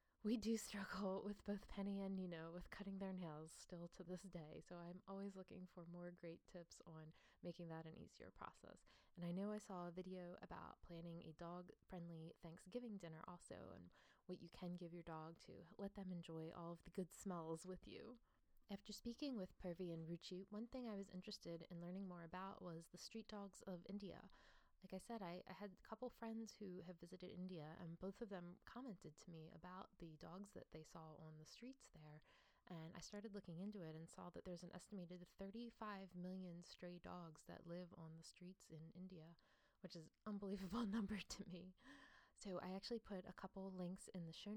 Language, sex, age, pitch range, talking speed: English, female, 20-39, 170-195 Hz, 205 wpm